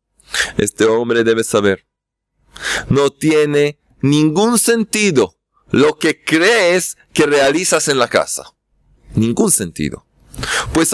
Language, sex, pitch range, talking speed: Spanish, male, 140-195 Hz, 105 wpm